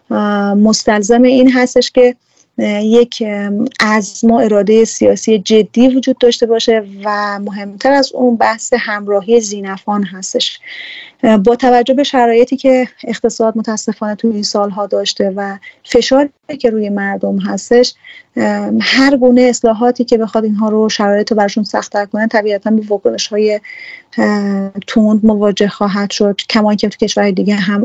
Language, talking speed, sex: Persian, 135 wpm, female